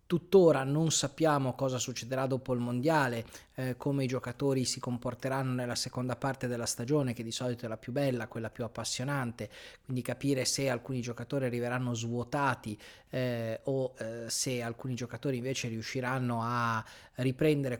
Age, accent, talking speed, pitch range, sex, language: 30-49, native, 155 wpm, 125-140 Hz, male, Italian